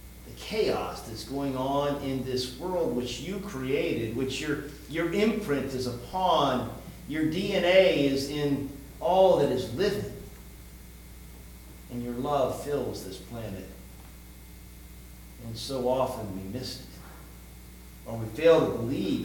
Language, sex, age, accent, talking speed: English, male, 50-69, American, 130 wpm